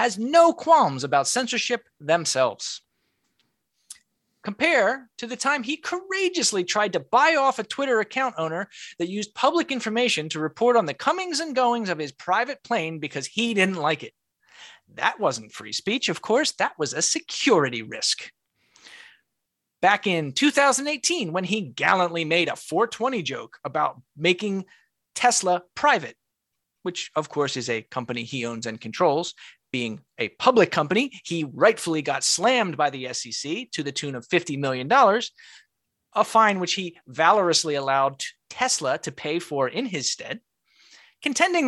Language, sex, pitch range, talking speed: English, male, 155-250 Hz, 155 wpm